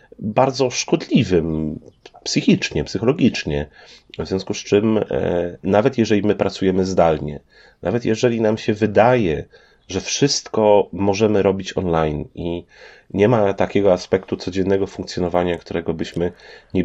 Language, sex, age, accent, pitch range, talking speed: Polish, male, 30-49, native, 90-105 Hz, 120 wpm